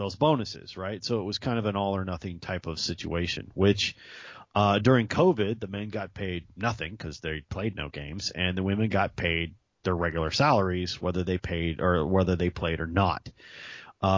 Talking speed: 190 wpm